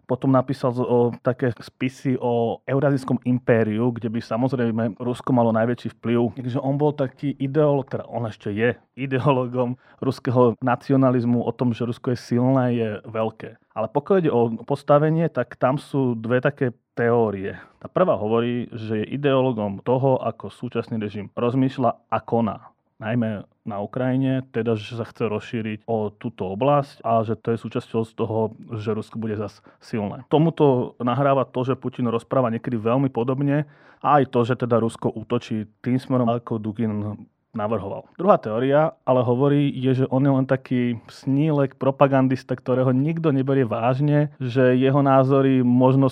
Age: 30-49